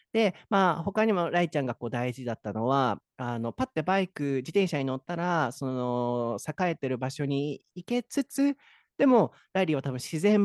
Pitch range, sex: 110-160 Hz, male